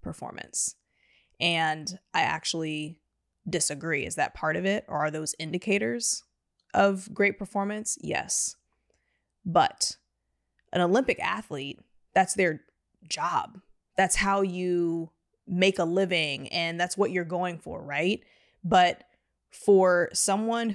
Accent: American